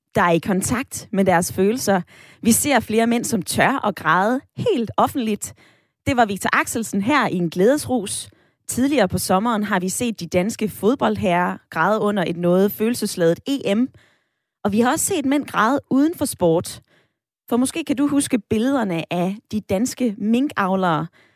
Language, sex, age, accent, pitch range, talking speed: Danish, female, 20-39, native, 175-255 Hz, 170 wpm